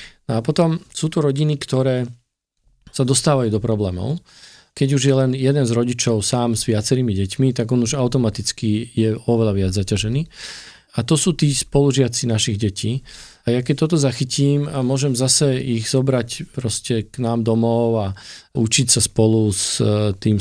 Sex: male